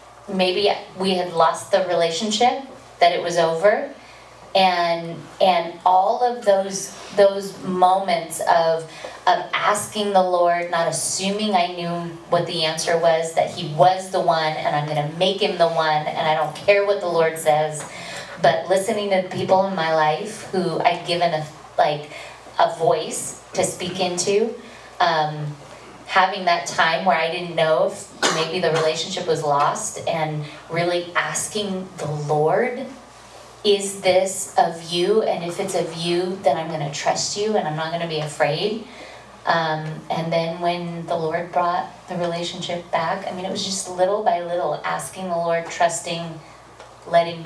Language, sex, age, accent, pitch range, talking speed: English, female, 30-49, American, 160-185 Hz, 165 wpm